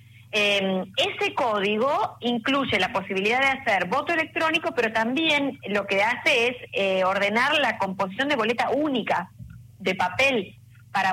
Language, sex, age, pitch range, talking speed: Spanish, female, 30-49, 180-260 Hz, 140 wpm